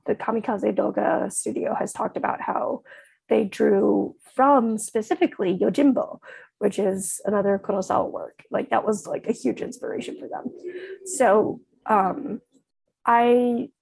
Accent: American